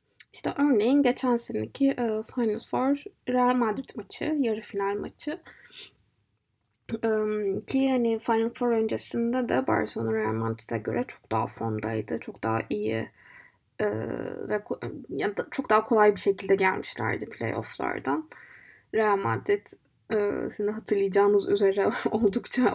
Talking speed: 125 wpm